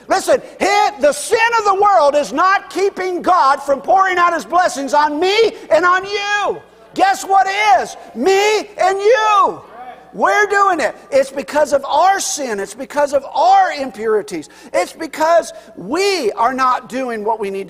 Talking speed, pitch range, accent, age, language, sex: 165 wpm, 245-360 Hz, American, 50-69, English, male